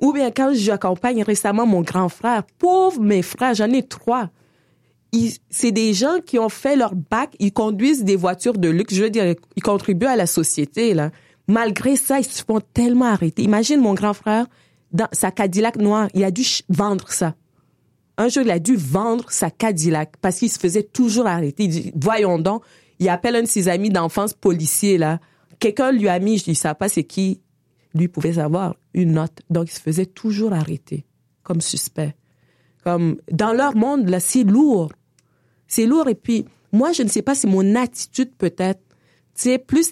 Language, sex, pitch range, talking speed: French, female, 170-230 Hz, 195 wpm